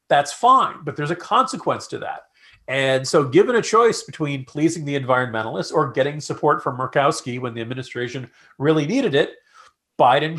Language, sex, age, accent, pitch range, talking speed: English, male, 40-59, American, 130-185 Hz, 170 wpm